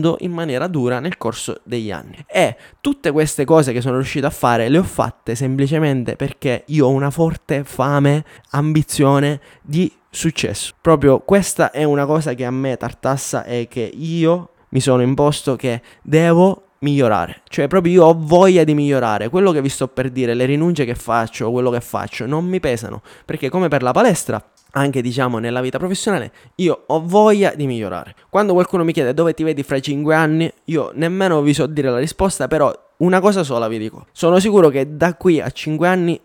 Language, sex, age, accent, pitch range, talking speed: Italian, male, 20-39, native, 125-165 Hz, 195 wpm